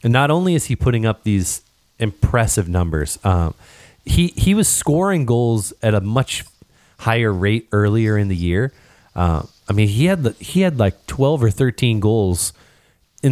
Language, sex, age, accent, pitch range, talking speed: English, male, 20-39, American, 95-115 Hz, 175 wpm